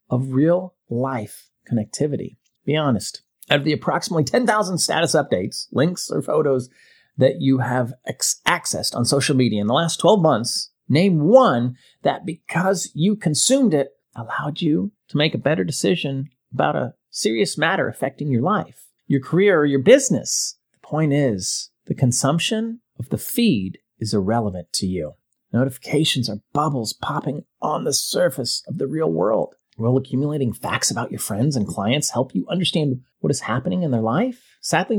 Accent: American